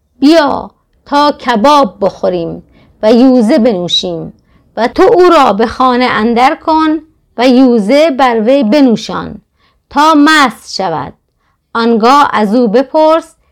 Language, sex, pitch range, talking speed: Persian, female, 215-275 Hz, 115 wpm